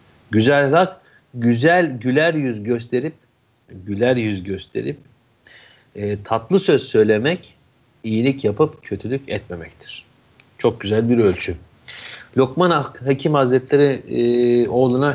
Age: 50-69